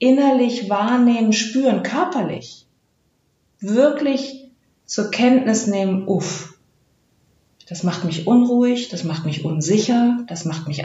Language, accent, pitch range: German, German, 180-225 Hz